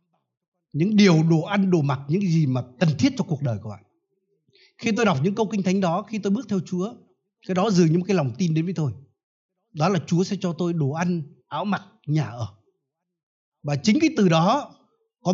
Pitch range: 145-200 Hz